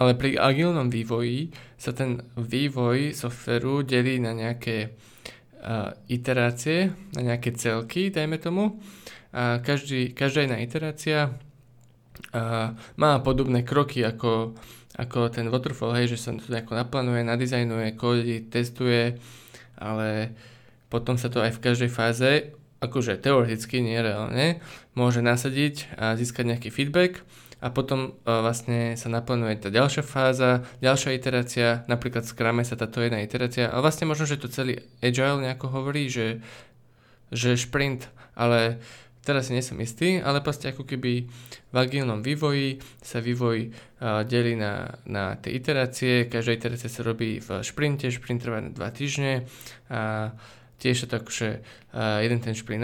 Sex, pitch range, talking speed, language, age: male, 115-130 Hz, 140 wpm, Slovak, 20-39